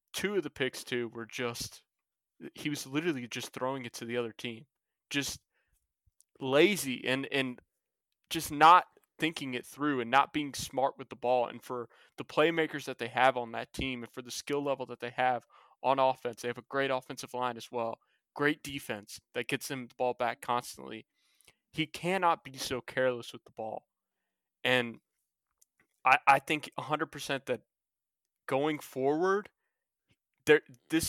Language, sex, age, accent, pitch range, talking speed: English, male, 20-39, American, 125-145 Hz, 170 wpm